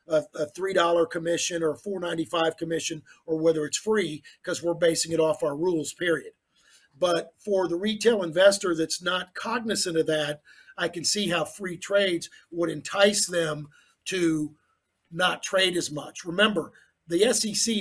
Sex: male